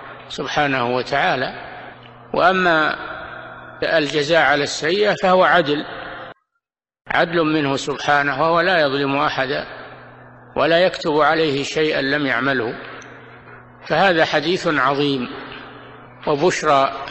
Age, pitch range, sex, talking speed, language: 60-79, 140-180 Hz, male, 90 wpm, Arabic